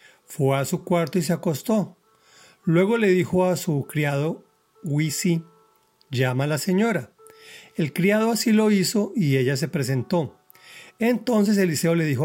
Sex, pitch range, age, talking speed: male, 140-205 Hz, 40-59, 150 wpm